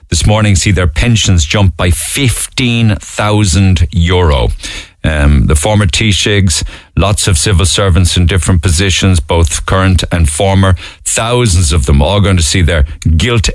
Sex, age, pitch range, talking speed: male, 50-69, 80-105 Hz, 145 wpm